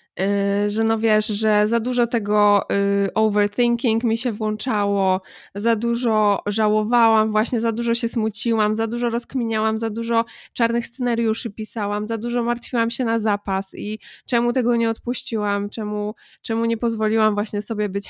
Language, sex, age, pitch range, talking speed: Polish, female, 20-39, 190-220 Hz, 155 wpm